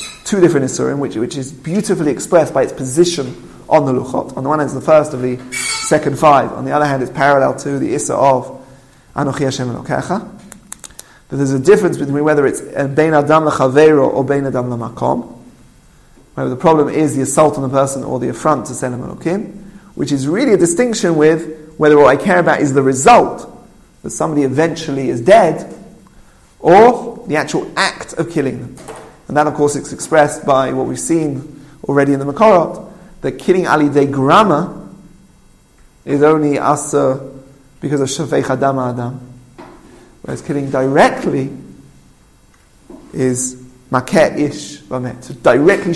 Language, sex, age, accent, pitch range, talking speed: English, male, 30-49, British, 130-155 Hz, 170 wpm